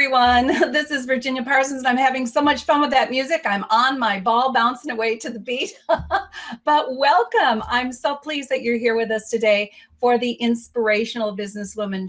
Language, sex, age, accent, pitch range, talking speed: English, female, 40-59, American, 215-275 Hz, 190 wpm